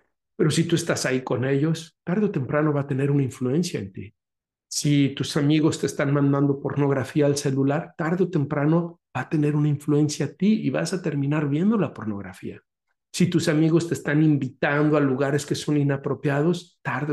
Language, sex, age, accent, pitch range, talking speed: Spanish, male, 50-69, Mexican, 125-150 Hz, 195 wpm